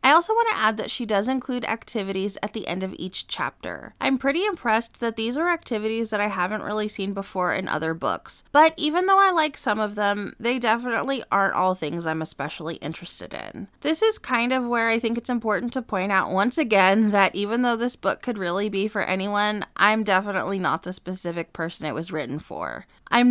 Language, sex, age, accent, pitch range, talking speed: English, female, 20-39, American, 180-250 Hz, 215 wpm